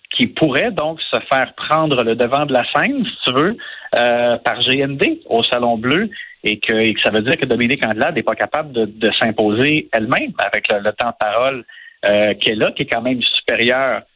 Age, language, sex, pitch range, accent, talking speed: 50-69, French, male, 115-155 Hz, Canadian, 215 wpm